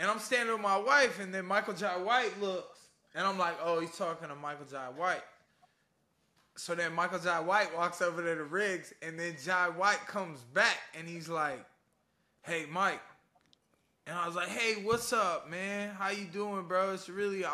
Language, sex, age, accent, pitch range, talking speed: English, male, 20-39, American, 150-190 Hz, 200 wpm